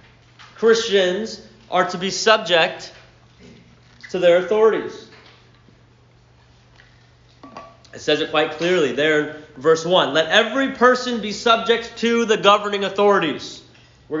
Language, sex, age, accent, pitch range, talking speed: English, male, 30-49, American, 195-265 Hz, 115 wpm